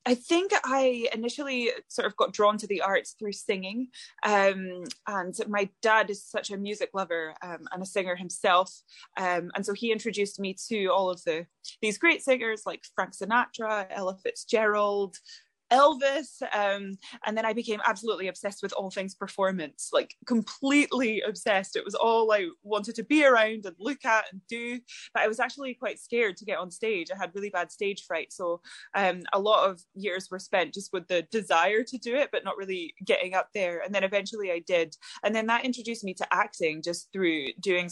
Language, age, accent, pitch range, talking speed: English, 10-29, British, 180-240 Hz, 200 wpm